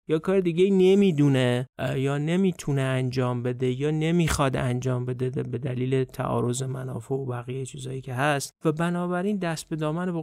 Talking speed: 160 wpm